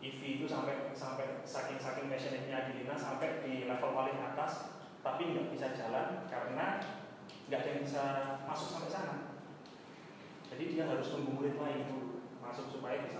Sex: male